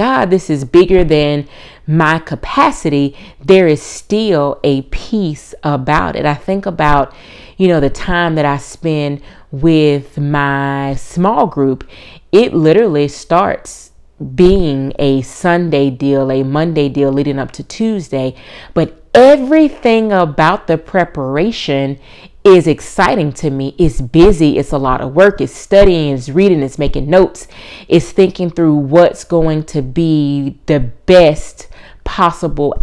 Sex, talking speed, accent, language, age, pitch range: female, 140 wpm, American, English, 30-49, 140-170 Hz